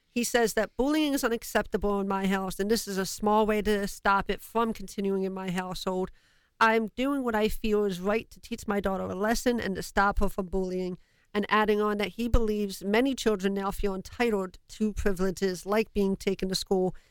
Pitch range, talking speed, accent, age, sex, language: 195-225 Hz, 210 wpm, American, 50-69, female, English